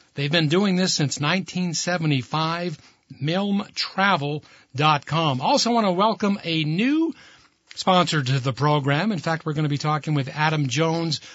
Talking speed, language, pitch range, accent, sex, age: 145 wpm, English, 150-190 Hz, American, male, 60-79